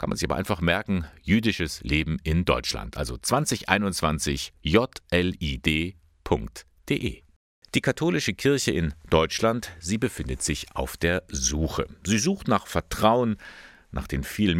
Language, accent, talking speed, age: German, German, 125 wpm, 50-69